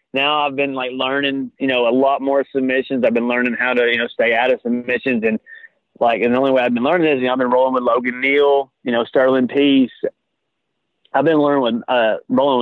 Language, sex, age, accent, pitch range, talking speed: English, male, 30-49, American, 120-140 Hz, 240 wpm